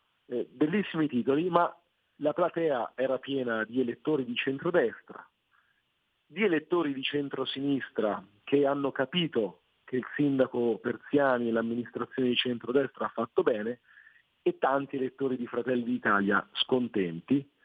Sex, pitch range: male, 120-145 Hz